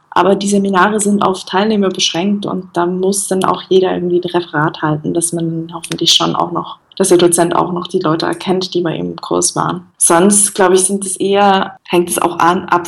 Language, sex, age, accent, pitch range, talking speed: German, female, 20-39, German, 180-210 Hz, 225 wpm